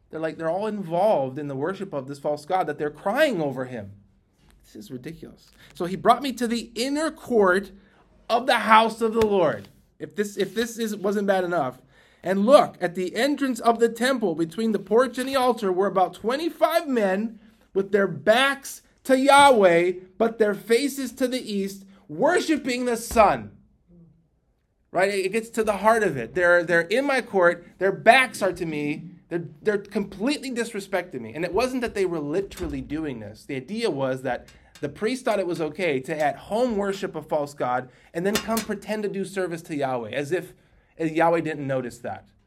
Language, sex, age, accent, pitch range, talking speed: English, male, 30-49, American, 155-220 Hz, 195 wpm